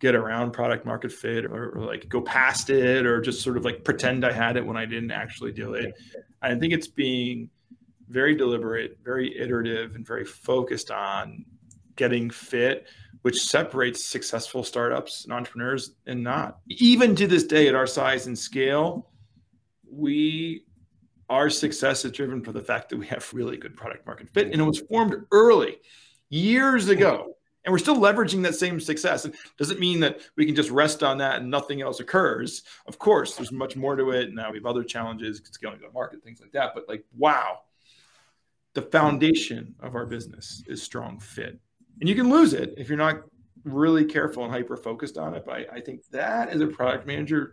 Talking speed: 195 wpm